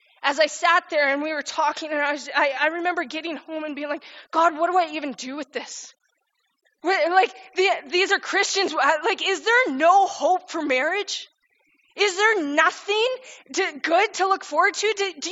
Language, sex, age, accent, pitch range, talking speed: English, female, 20-39, American, 275-360 Hz, 200 wpm